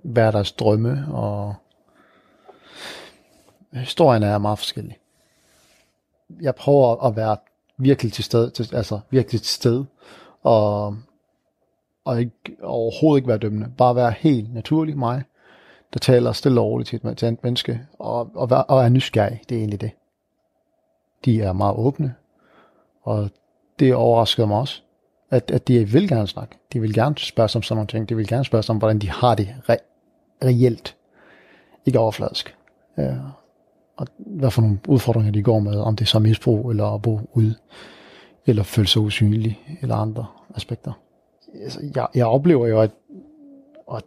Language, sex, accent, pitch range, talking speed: Danish, male, native, 110-135 Hz, 165 wpm